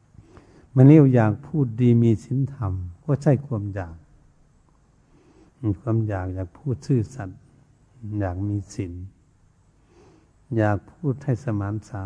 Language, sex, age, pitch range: Thai, male, 70-89, 100-125 Hz